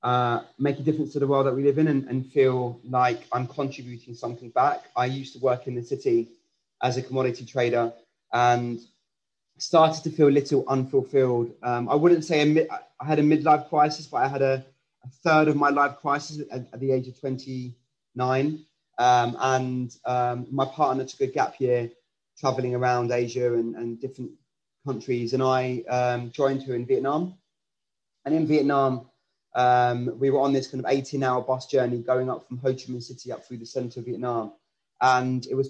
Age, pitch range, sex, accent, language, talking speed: 30-49, 125-145 Hz, male, British, English, 190 wpm